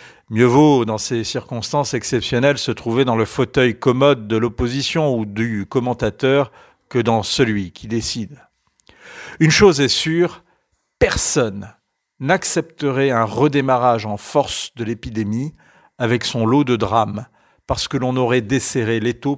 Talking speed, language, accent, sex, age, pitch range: 140 wpm, French, French, male, 50-69, 115-145 Hz